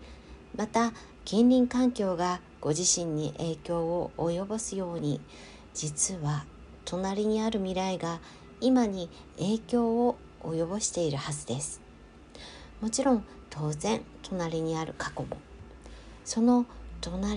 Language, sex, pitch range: Japanese, female, 160-220 Hz